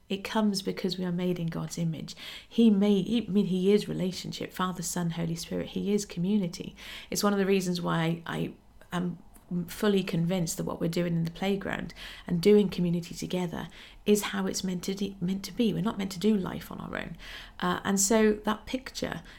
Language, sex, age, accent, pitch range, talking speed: English, female, 50-69, British, 180-215 Hz, 200 wpm